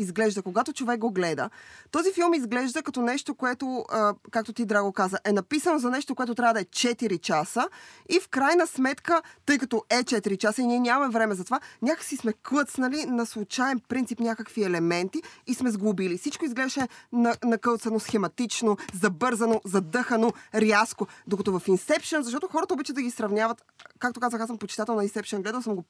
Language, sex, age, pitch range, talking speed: Bulgarian, female, 20-39, 205-265 Hz, 185 wpm